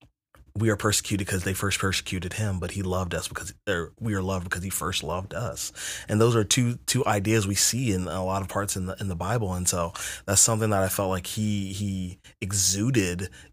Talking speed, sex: 225 wpm, male